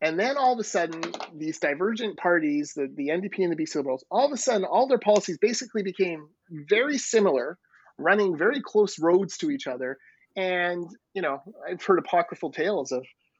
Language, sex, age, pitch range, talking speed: English, male, 30-49, 140-210 Hz, 190 wpm